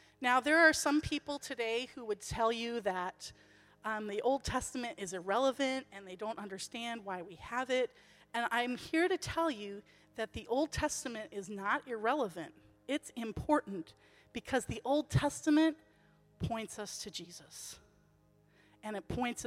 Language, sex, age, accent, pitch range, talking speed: Swedish, female, 40-59, American, 215-300 Hz, 155 wpm